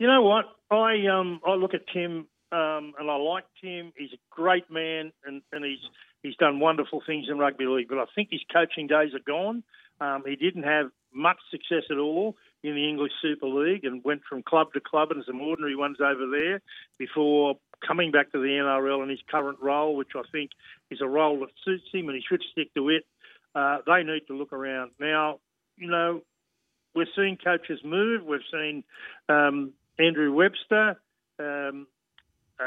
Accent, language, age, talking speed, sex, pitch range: Australian, English, 50-69, 195 wpm, male, 145-180 Hz